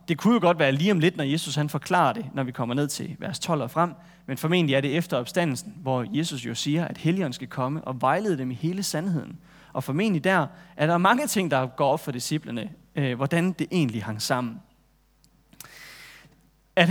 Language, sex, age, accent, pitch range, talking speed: Danish, male, 30-49, native, 135-175 Hz, 215 wpm